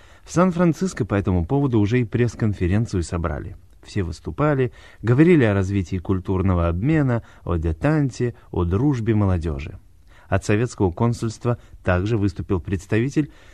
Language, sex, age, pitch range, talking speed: Russian, male, 30-49, 90-125 Hz, 120 wpm